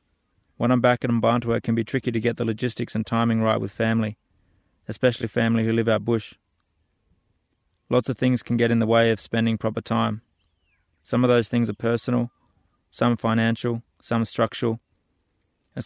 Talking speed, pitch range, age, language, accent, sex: 180 wpm, 105-115 Hz, 20-39, English, Australian, male